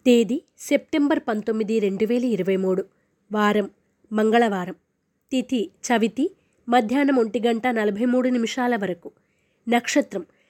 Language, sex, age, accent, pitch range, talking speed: Telugu, female, 20-39, native, 215-260 Hz, 105 wpm